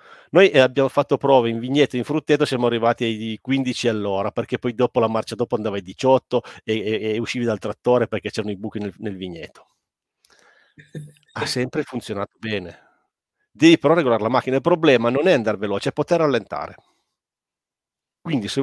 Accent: native